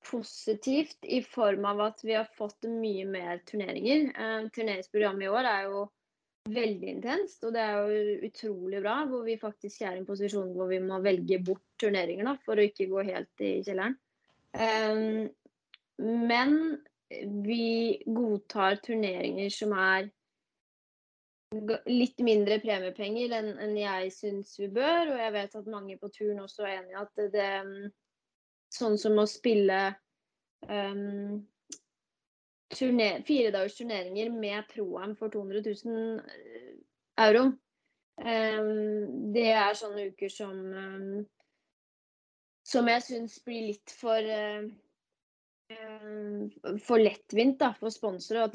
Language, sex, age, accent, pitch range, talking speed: English, female, 20-39, Swedish, 200-225 Hz, 125 wpm